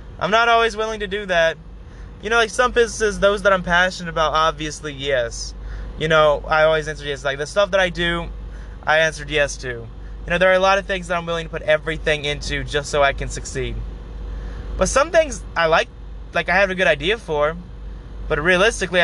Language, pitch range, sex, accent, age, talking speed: English, 150-200 Hz, male, American, 20-39, 220 wpm